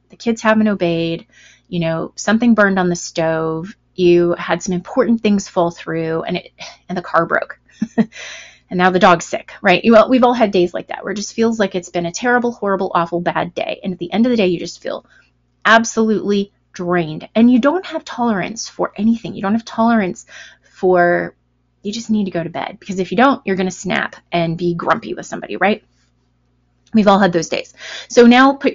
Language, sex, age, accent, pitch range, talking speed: English, female, 30-49, American, 175-220 Hz, 215 wpm